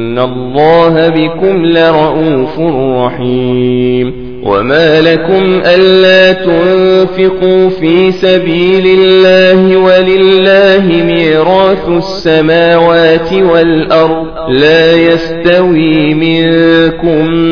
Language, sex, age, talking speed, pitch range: Arabic, male, 40-59, 60 wpm, 160-180 Hz